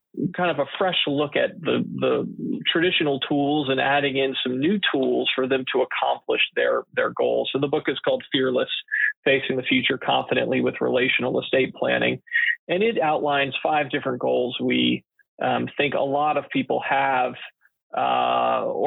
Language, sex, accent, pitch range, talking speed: English, male, American, 130-160 Hz, 165 wpm